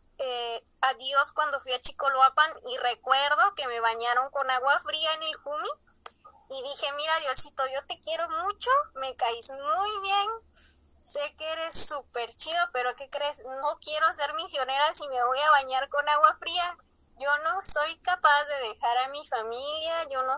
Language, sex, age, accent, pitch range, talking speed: Spanish, female, 20-39, Mexican, 250-310 Hz, 175 wpm